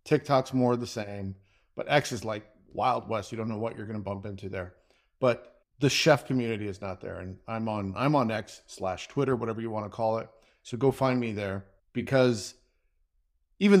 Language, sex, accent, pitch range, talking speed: English, male, American, 105-130 Hz, 215 wpm